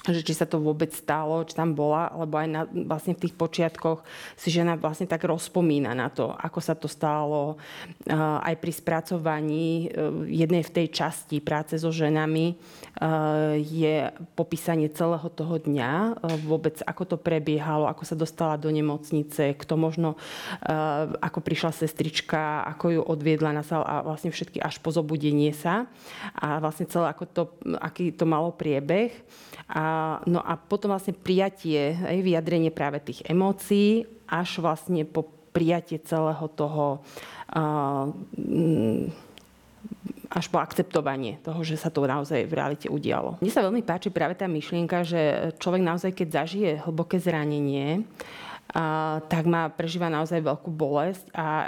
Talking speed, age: 155 wpm, 30-49